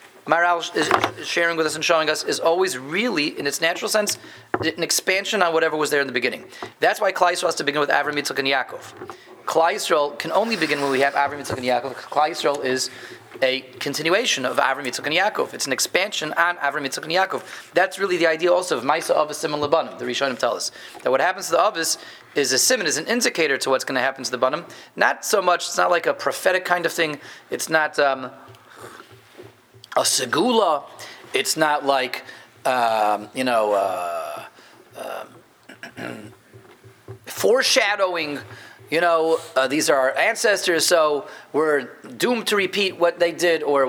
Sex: male